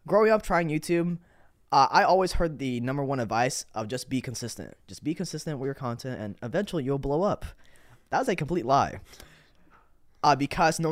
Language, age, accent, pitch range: English, 20-39, American, 115-175 Hz